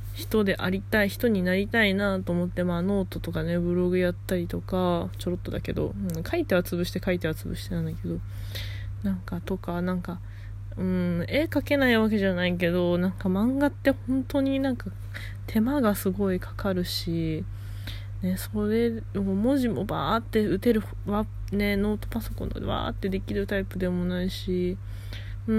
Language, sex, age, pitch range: Japanese, female, 20-39, 95-110 Hz